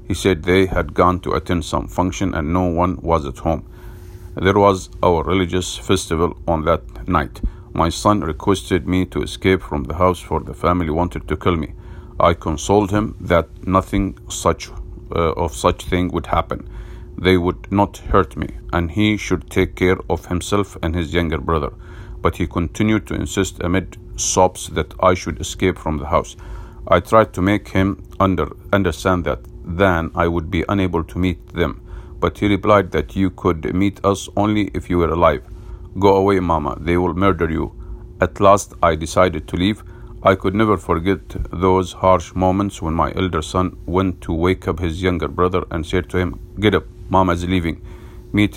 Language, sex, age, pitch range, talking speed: English, male, 50-69, 85-95 Hz, 185 wpm